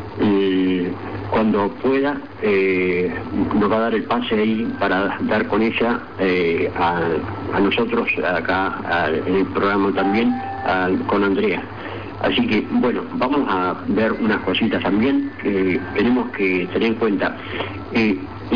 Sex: male